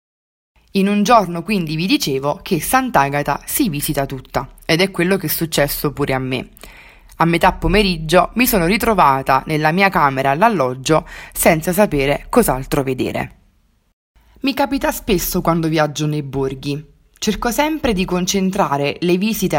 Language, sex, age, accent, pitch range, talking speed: Italian, female, 20-39, native, 145-205 Hz, 145 wpm